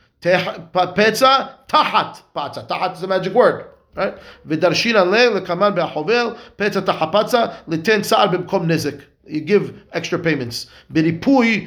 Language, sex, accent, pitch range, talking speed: English, male, Israeli, 165-210 Hz, 130 wpm